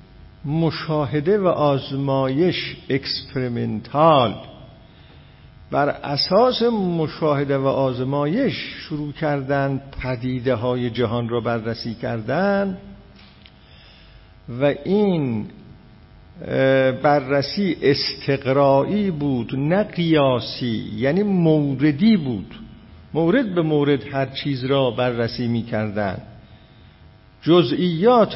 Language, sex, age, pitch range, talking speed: Persian, male, 50-69, 130-170 Hz, 75 wpm